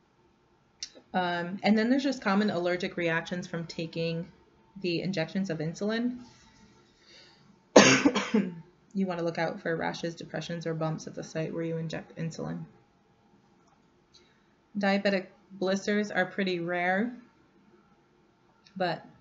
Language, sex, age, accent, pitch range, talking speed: English, female, 20-39, American, 165-195 Hz, 115 wpm